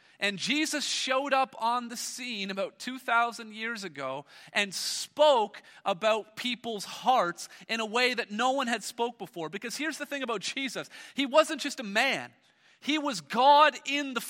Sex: male